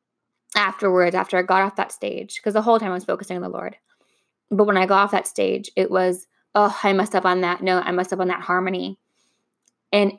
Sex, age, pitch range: female, 10-29, 185-235 Hz